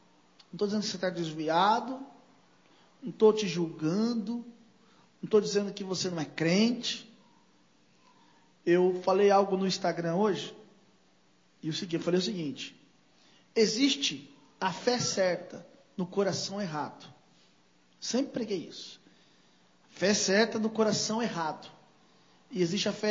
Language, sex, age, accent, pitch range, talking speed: Portuguese, male, 40-59, Brazilian, 175-245 Hz, 130 wpm